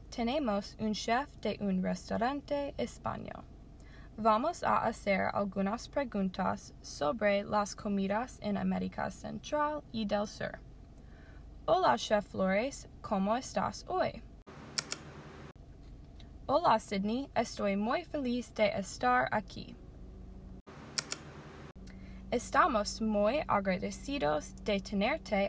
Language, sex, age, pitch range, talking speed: Spanish, female, 10-29, 190-235 Hz, 95 wpm